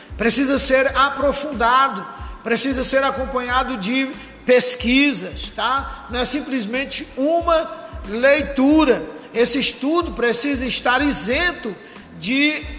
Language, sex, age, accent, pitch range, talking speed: Portuguese, male, 50-69, Brazilian, 215-270 Hz, 95 wpm